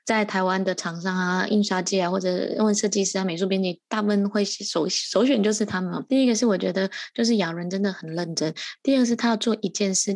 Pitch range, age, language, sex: 190-225 Hz, 20-39, Chinese, female